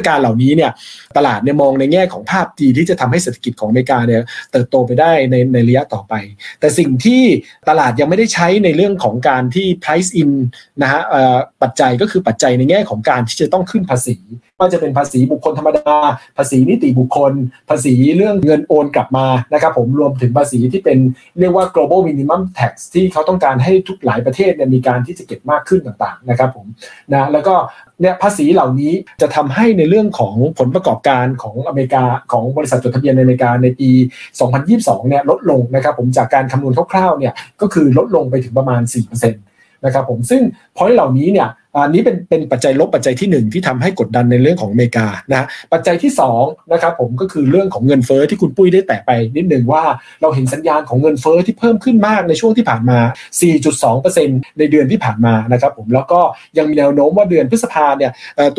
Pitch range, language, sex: 125-175 Hz, Thai, male